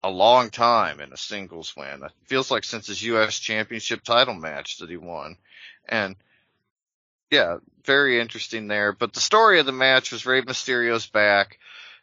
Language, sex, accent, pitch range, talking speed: English, male, American, 110-135 Hz, 170 wpm